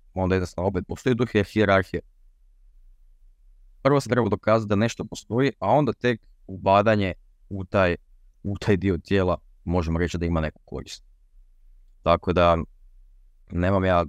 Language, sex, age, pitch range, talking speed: Croatian, male, 20-39, 85-110 Hz, 135 wpm